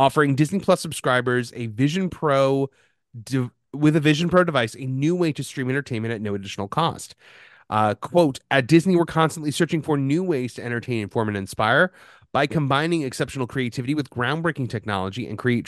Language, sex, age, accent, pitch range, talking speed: English, male, 30-49, American, 115-155 Hz, 180 wpm